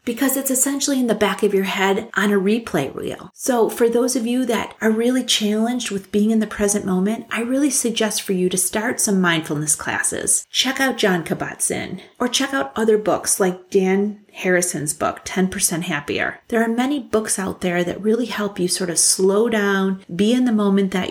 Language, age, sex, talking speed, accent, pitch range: English, 30-49, female, 205 wpm, American, 190-235 Hz